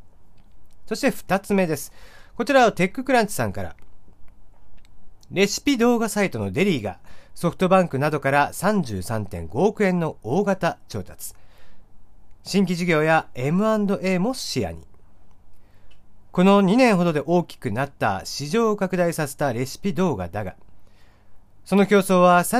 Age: 40-59